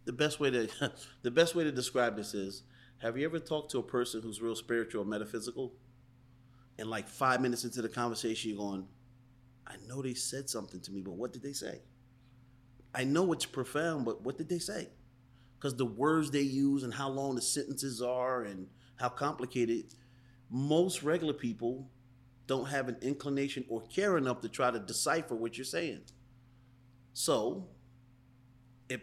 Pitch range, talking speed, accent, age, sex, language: 115-130 Hz, 180 wpm, American, 30-49, male, English